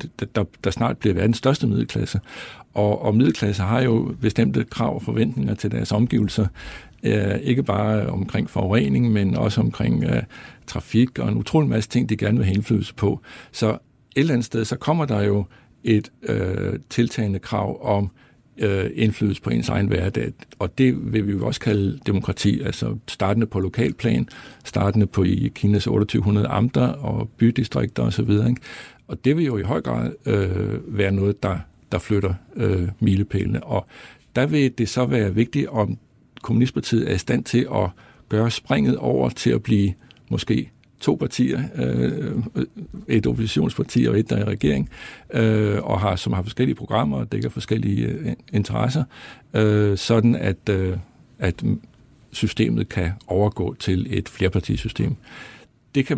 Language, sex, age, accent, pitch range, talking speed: Danish, male, 60-79, native, 100-120 Hz, 155 wpm